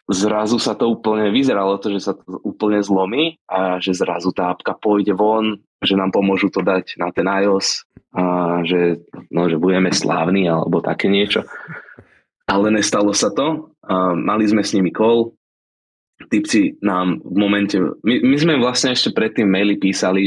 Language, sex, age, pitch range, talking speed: Slovak, male, 20-39, 90-105 Hz, 155 wpm